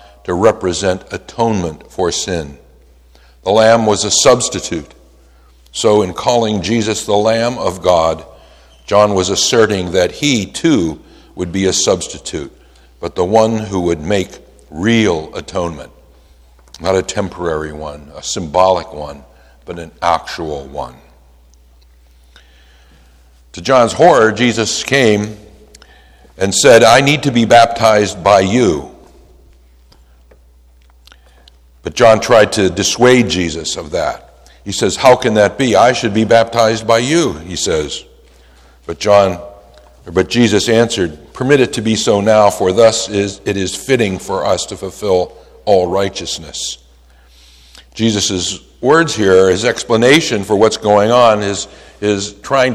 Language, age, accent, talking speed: English, 60-79, American, 135 wpm